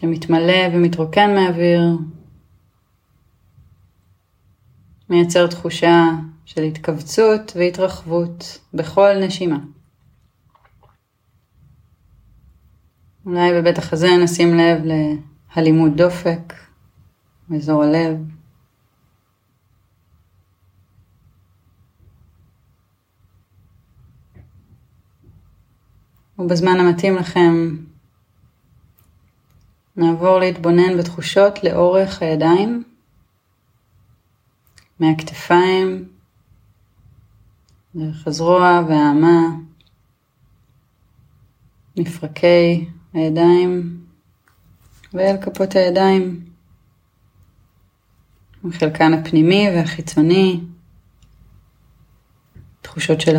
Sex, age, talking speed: female, 30-49, 45 wpm